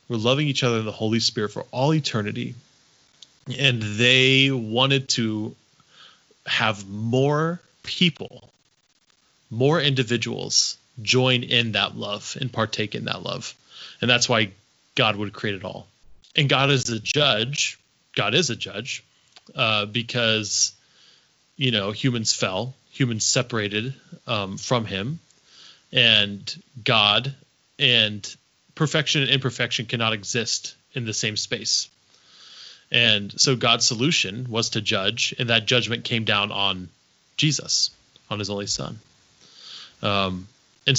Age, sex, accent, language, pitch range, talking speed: 20-39, male, American, English, 110-135 Hz, 130 wpm